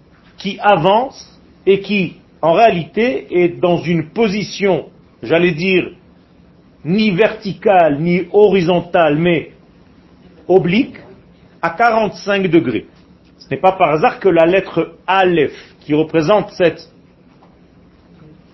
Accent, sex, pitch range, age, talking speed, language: French, male, 160-205 Hz, 40-59, 105 wpm, French